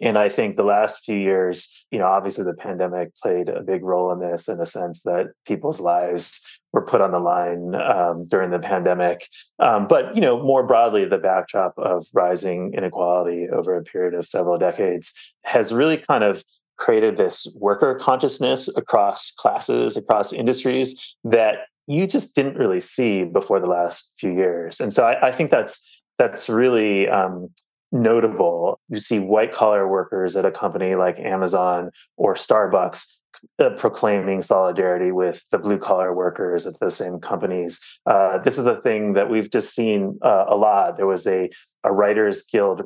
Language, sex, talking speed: English, male, 170 wpm